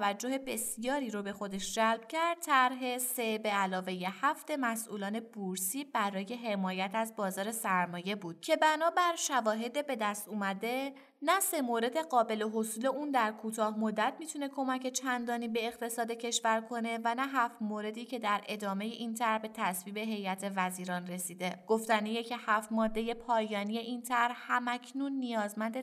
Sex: female